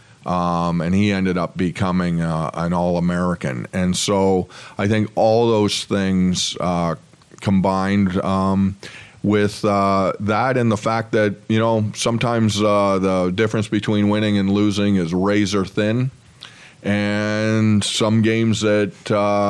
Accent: American